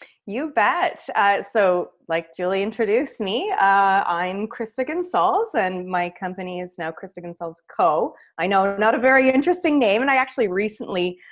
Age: 30-49